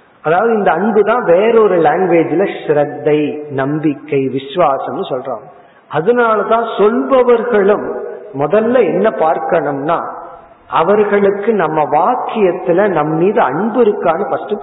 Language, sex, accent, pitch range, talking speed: Tamil, male, native, 150-230 Hz, 50 wpm